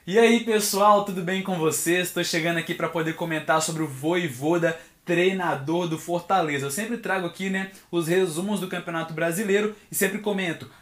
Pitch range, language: 155-185 Hz, Portuguese